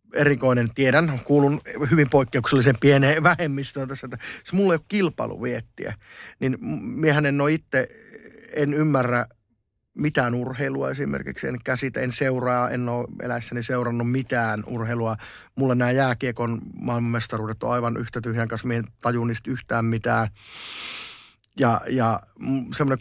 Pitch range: 120-140 Hz